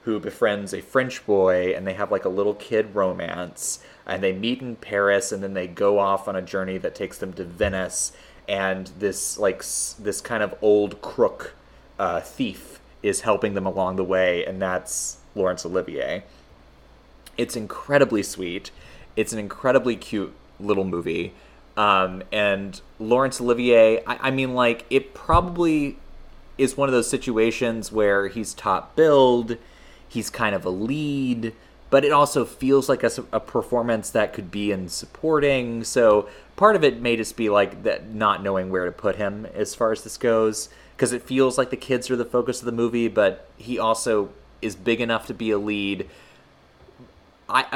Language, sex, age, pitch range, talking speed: English, male, 30-49, 100-125 Hz, 175 wpm